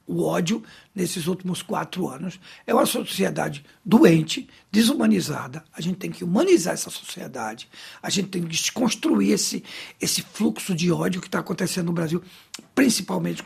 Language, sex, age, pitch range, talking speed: Portuguese, male, 60-79, 160-195 Hz, 150 wpm